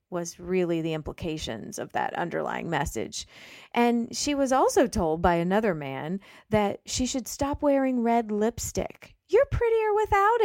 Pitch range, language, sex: 185-275 Hz, English, female